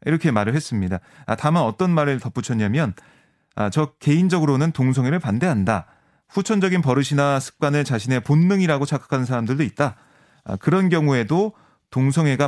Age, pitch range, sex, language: 30-49, 125-170 Hz, male, Korean